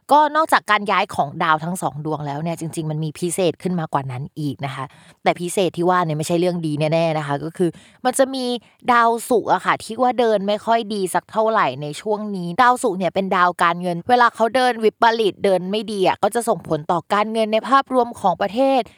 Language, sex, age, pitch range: Thai, female, 20-39, 175-230 Hz